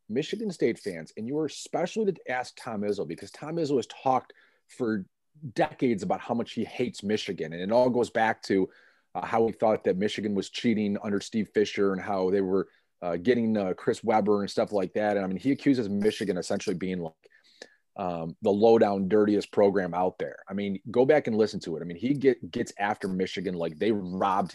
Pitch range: 95-115 Hz